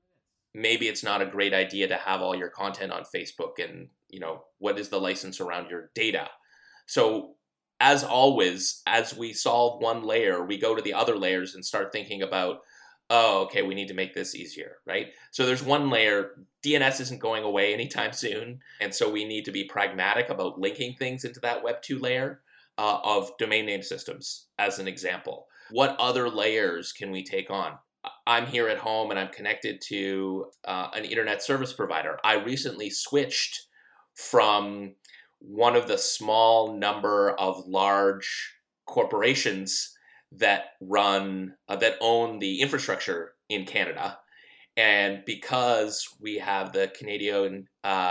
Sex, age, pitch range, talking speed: male, 30-49, 100-135 Hz, 160 wpm